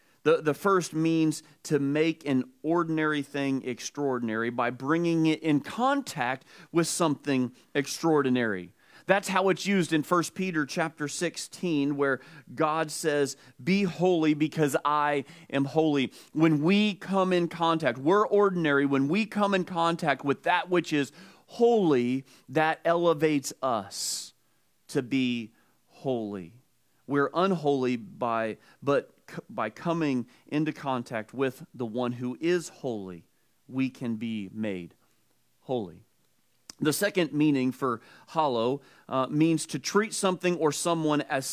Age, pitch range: 40-59, 125-165 Hz